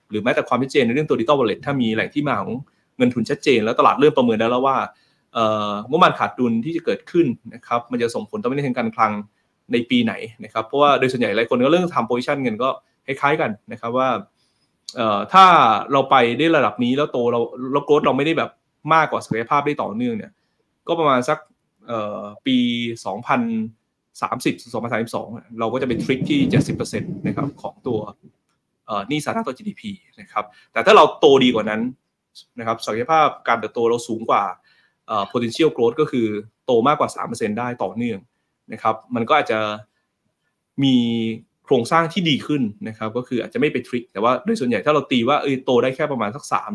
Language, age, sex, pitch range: Thai, 20-39, male, 115-155 Hz